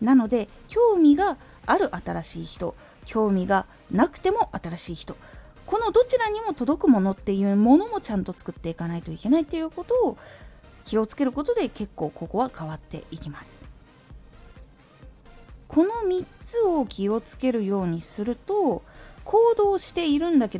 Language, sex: Japanese, female